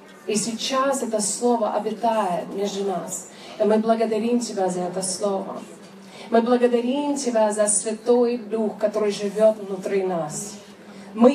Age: 30-49